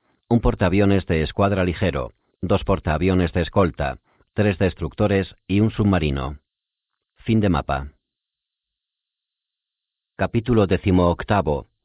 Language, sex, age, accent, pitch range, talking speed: Spanish, male, 40-59, Spanish, 80-95 Hz, 95 wpm